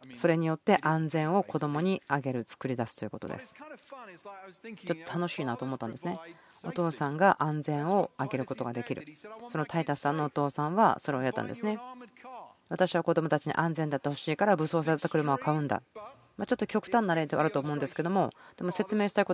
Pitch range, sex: 140-185 Hz, female